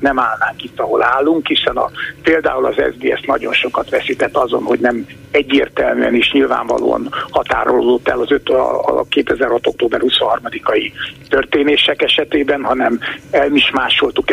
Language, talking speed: Hungarian, 125 wpm